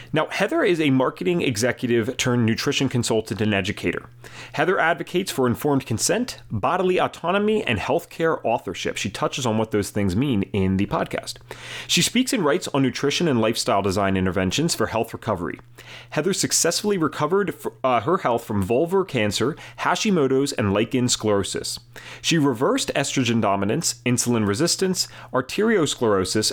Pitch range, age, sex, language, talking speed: 110-155 Hz, 30-49, male, English, 145 wpm